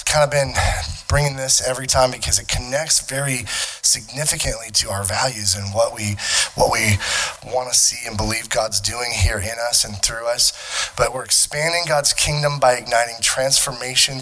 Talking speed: 175 wpm